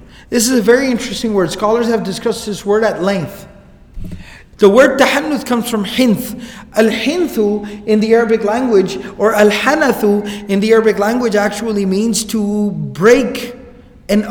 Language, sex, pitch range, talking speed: English, male, 195-235 Hz, 145 wpm